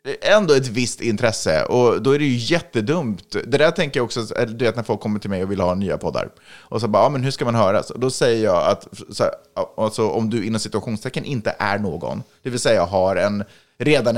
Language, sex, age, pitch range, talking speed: Swedish, male, 30-49, 95-135 Hz, 250 wpm